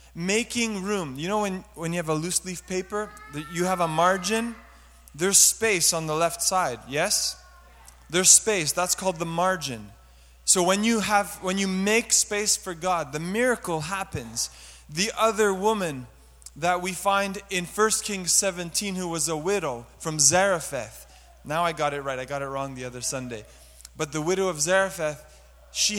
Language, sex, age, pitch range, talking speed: English, male, 20-39, 150-200 Hz, 180 wpm